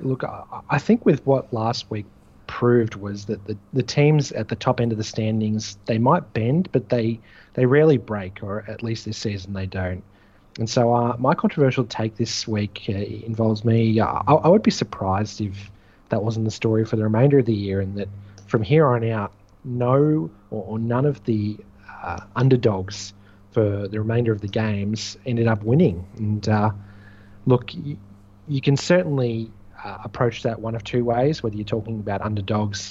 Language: English